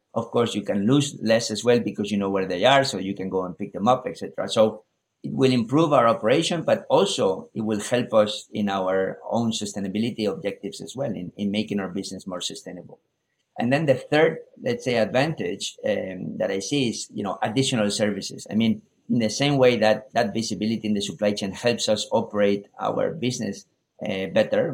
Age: 50-69